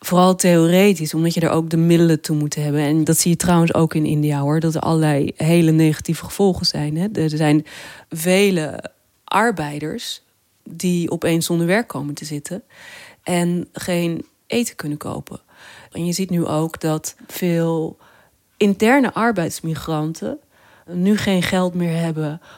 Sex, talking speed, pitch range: female, 150 wpm, 155-205 Hz